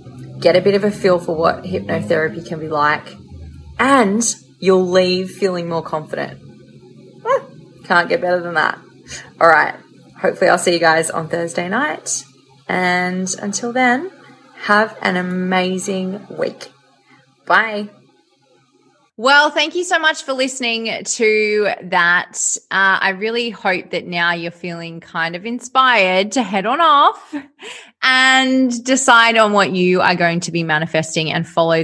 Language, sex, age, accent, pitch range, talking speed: English, female, 20-39, Australian, 170-225 Hz, 145 wpm